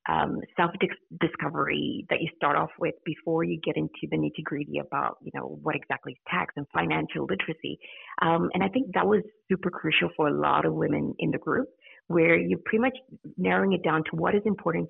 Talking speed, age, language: 210 wpm, 30-49, English